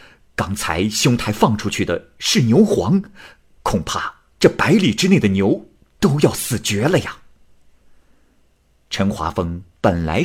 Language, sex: Chinese, male